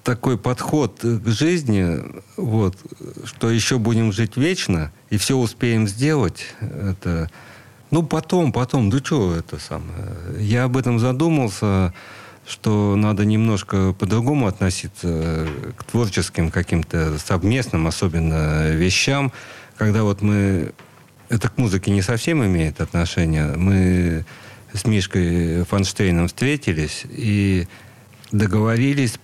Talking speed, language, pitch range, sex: 110 wpm, Russian, 90-120 Hz, male